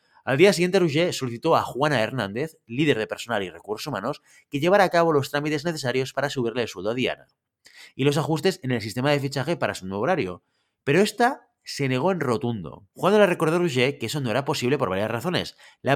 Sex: male